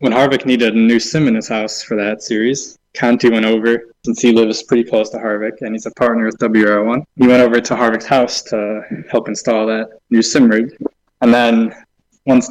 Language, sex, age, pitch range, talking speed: English, male, 20-39, 110-120 Hz, 210 wpm